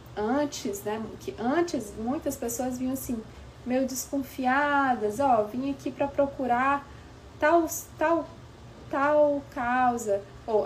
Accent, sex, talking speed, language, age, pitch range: Brazilian, female, 120 wpm, Portuguese, 20-39, 205-275 Hz